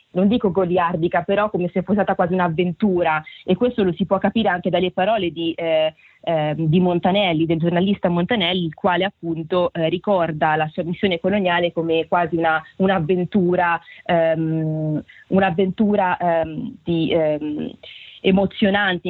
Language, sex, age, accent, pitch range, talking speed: Italian, female, 20-39, native, 170-195 Hz, 145 wpm